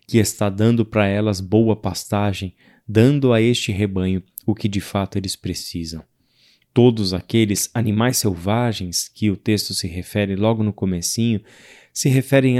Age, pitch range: 20-39, 100-115 Hz